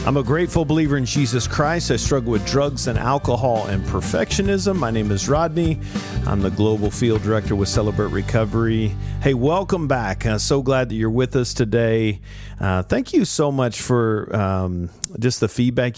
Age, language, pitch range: 50-69, English, 95-125 Hz